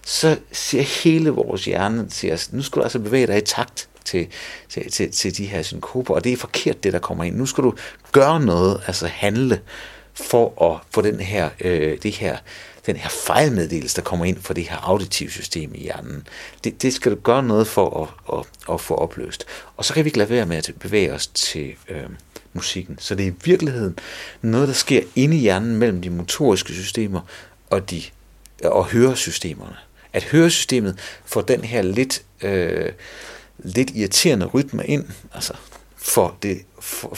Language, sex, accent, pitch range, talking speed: Danish, male, native, 90-120 Hz, 185 wpm